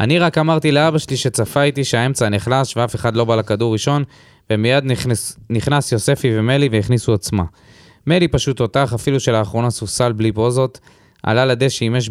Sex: male